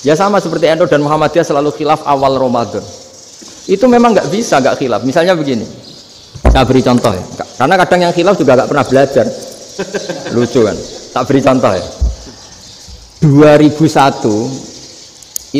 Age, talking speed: 50-69, 145 wpm